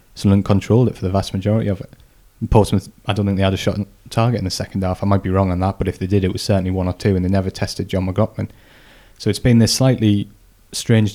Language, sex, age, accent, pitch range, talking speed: English, male, 20-39, British, 95-105 Hz, 270 wpm